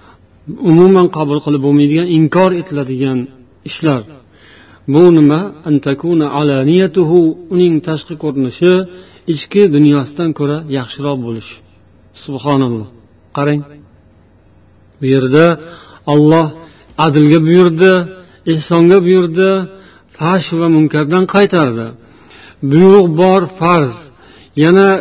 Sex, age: male, 50-69